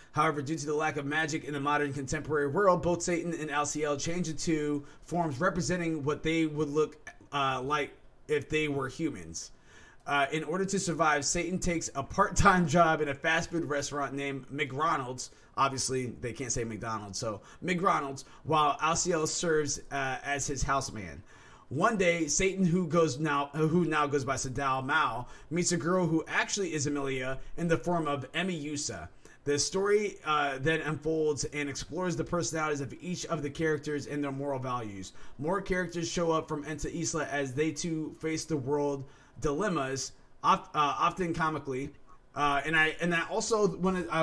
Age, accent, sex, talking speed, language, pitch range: 20-39, American, male, 175 wpm, English, 140-165 Hz